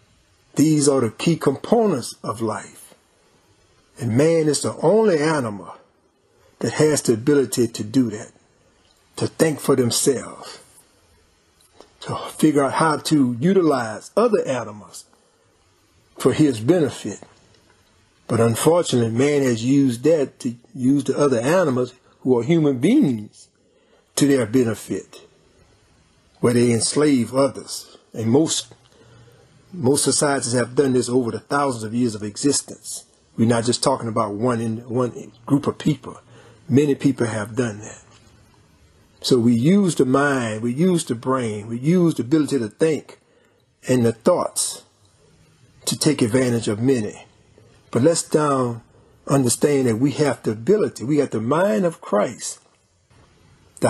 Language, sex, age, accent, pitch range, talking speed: English, male, 50-69, American, 110-145 Hz, 140 wpm